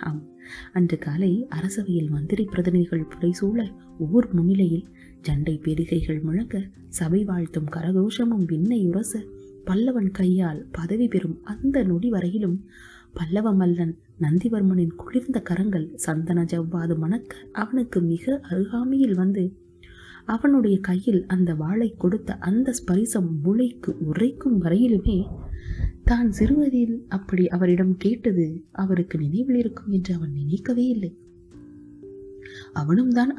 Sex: female